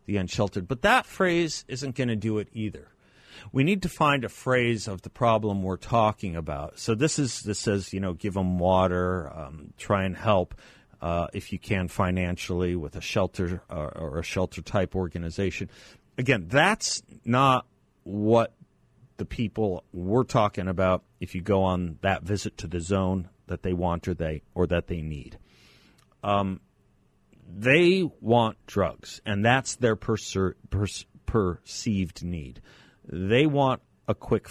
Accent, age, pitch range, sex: American, 50-69, 90-115 Hz, male